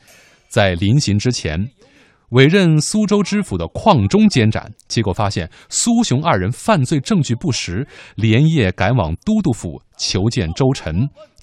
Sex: male